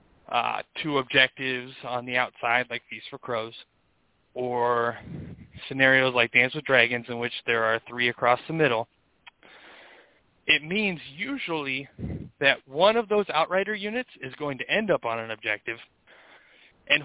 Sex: male